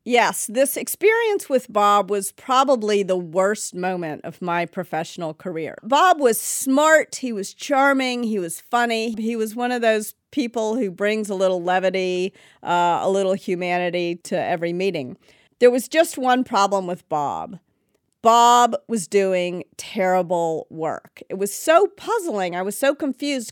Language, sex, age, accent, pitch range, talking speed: English, female, 50-69, American, 185-240 Hz, 155 wpm